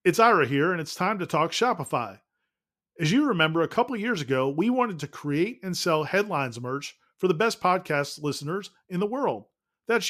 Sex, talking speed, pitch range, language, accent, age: male, 195 wpm, 155-205 Hz, English, American, 40-59